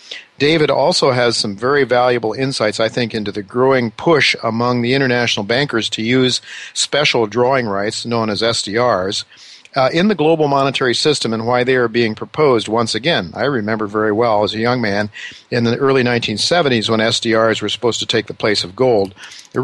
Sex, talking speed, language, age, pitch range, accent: male, 190 wpm, English, 50-69, 110-130 Hz, American